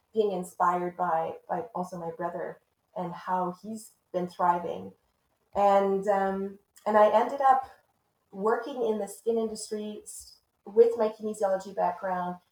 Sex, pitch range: female, 180-215 Hz